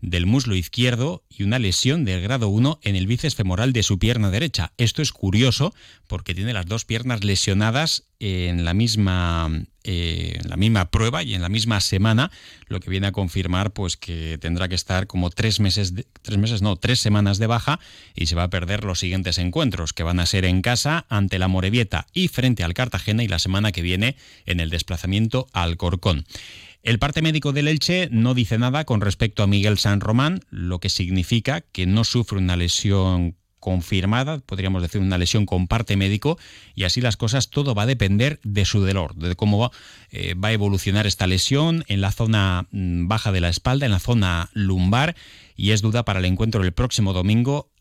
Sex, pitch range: male, 95-120 Hz